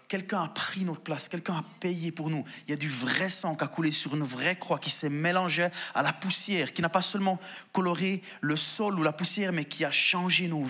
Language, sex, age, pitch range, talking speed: French, male, 30-49, 150-190 Hz, 245 wpm